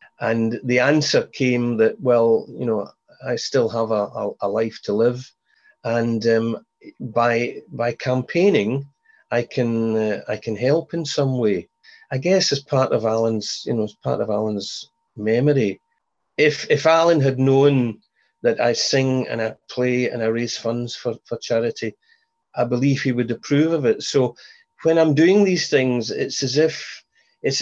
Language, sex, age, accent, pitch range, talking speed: English, male, 40-59, British, 115-155 Hz, 170 wpm